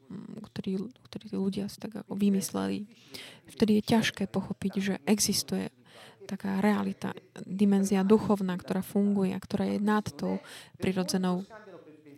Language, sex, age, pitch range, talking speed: Slovak, female, 20-39, 190-215 Hz, 125 wpm